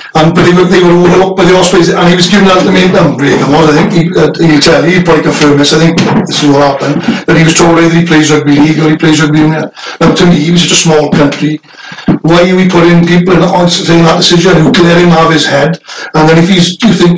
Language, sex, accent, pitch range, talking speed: English, male, British, 155-175 Hz, 285 wpm